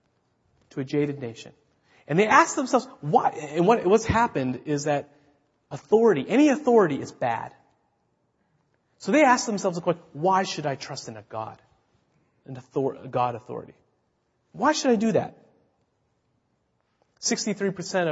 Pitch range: 120-160 Hz